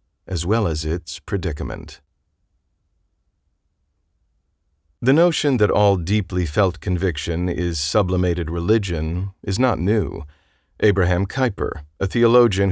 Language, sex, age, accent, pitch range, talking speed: English, male, 40-59, American, 85-105 Hz, 105 wpm